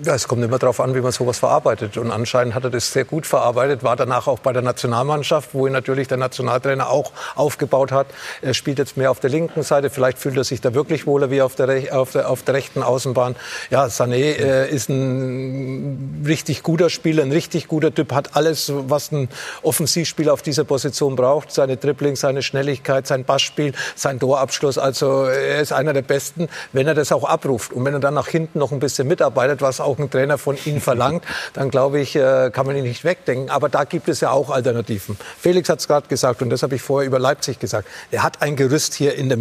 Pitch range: 130-150 Hz